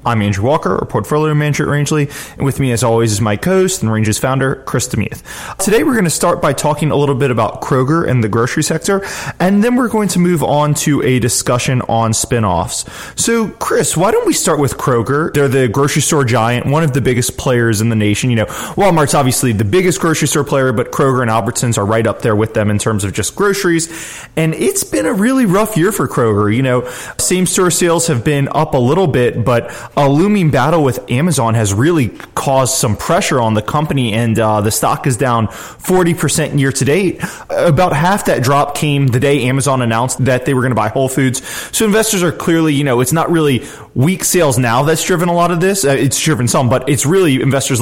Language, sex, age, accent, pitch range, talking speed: English, male, 20-39, American, 120-160 Hz, 230 wpm